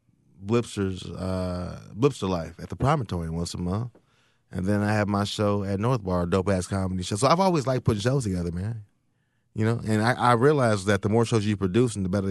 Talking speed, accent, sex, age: 225 wpm, American, male, 20-39